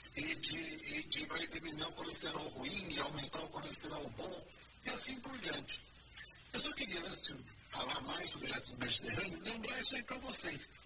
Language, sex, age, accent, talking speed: Portuguese, male, 50-69, Brazilian, 175 wpm